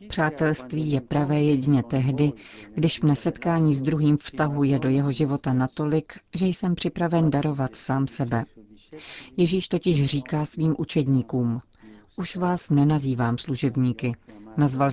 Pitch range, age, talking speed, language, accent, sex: 135-165 Hz, 40-59, 125 wpm, Czech, native, female